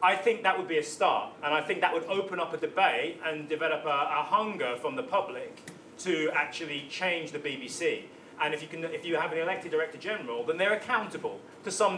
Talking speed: 225 wpm